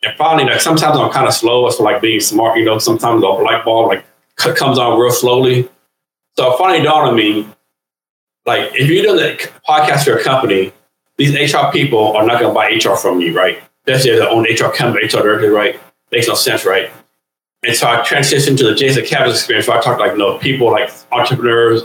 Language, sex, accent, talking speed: English, male, American, 230 wpm